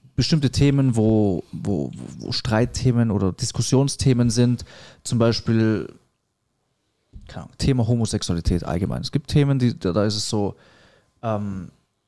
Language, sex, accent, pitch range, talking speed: German, male, German, 110-145 Hz, 120 wpm